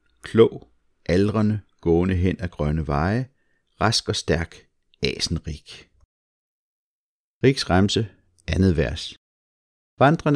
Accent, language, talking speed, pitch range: native, Danish, 85 wpm, 80-105 Hz